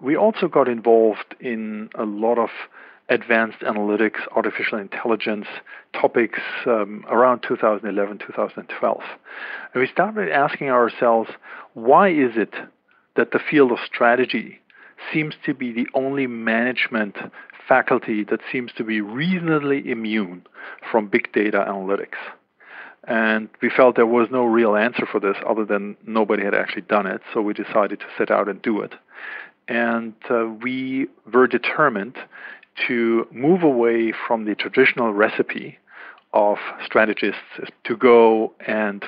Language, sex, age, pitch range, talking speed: English, male, 50-69, 105-120 Hz, 140 wpm